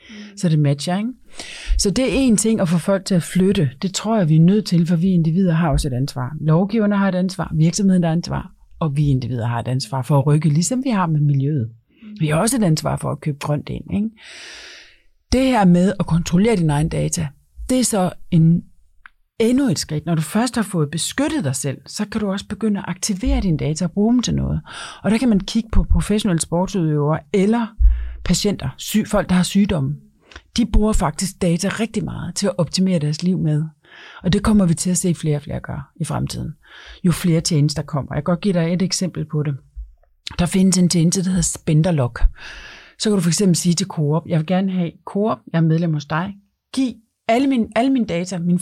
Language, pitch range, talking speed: Danish, 150-205 Hz, 220 wpm